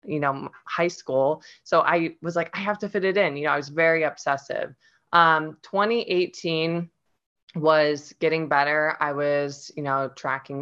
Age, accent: 20-39, American